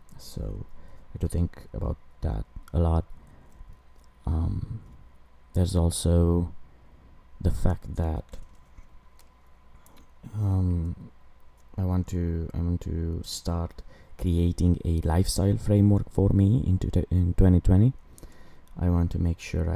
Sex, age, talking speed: male, 20-39, 110 wpm